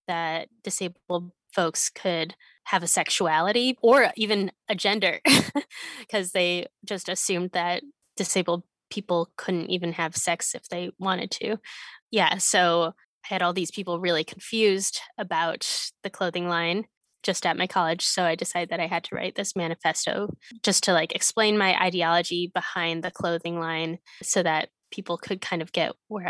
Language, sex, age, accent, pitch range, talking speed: English, female, 10-29, American, 175-200 Hz, 160 wpm